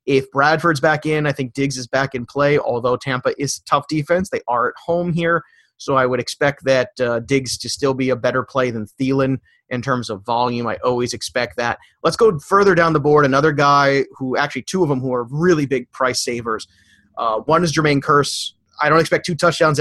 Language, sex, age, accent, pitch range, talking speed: English, male, 30-49, American, 125-150 Hz, 225 wpm